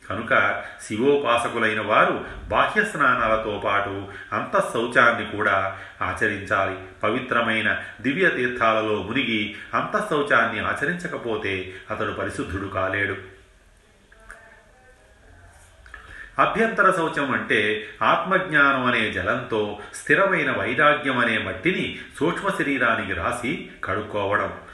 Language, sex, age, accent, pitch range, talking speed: Telugu, male, 40-59, native, 100-120 Hz, 75 wpm